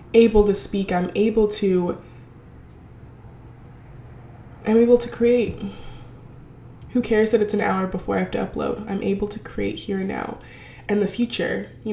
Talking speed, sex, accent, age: 160 wpm, female, American, 20-39